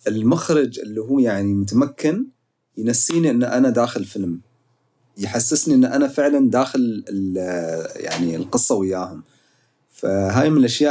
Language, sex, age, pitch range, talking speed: English, male, 30-49, 105-140 Hz, 115 wpm